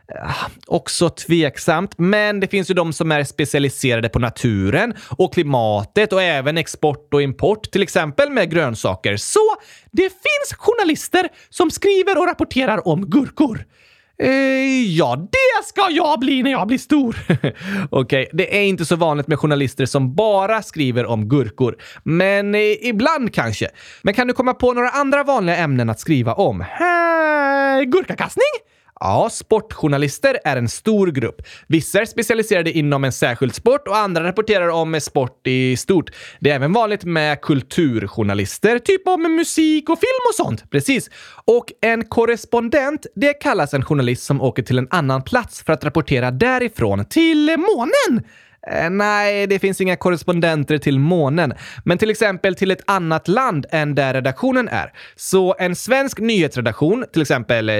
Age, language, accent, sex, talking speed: 20-39, Swedish, native, male, 155 wpm